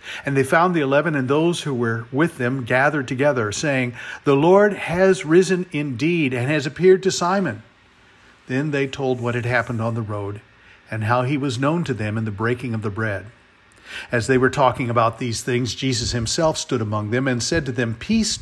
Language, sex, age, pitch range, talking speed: English, male, 50-69, 115-145 Hz, 205 wpm